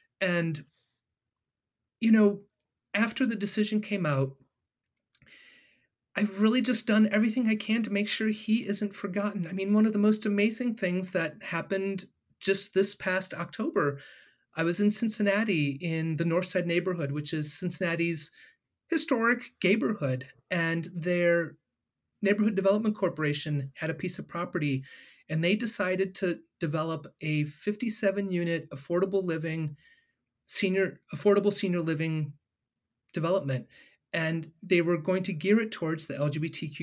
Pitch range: 160-210 Hz